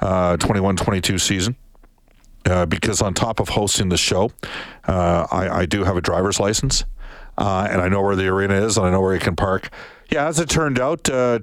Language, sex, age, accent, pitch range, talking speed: English, male, 50-69, American, 90-110 Hz, 210 wpm